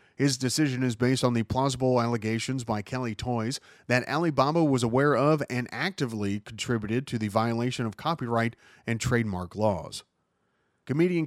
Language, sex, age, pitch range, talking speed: English, male, 30-49, 115-140 Hz, 150 wpm